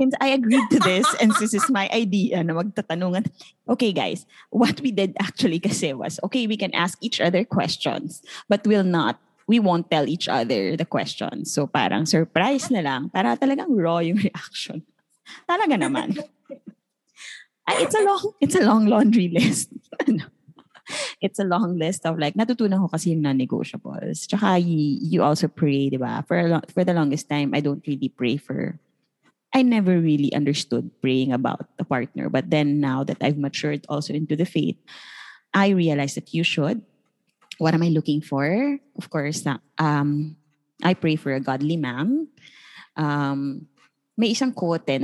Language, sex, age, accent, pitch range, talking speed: Filipino, female, 20-39, native, 150-210 Hz, 170 wpm